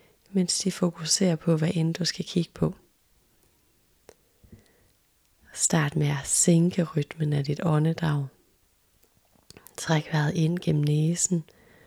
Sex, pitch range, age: female, 155-180 Hz, 30-49